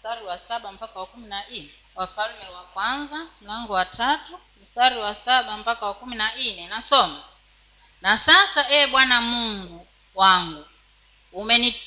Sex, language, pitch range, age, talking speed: female, Swahili, 225-290 Hz, 40-59, 125 wpm